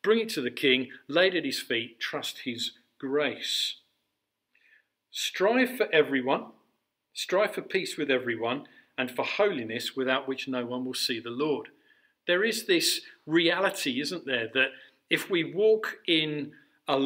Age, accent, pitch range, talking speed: 50-69, British, 125-170 Hz, 150 wpm